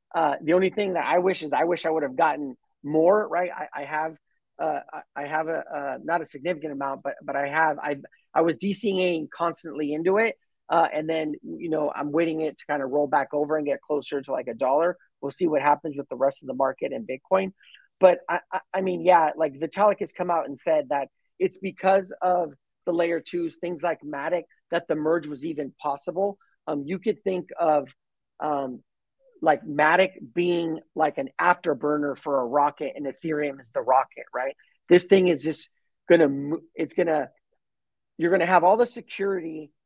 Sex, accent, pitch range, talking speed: male, American, 150-180 Hz, 205 wpm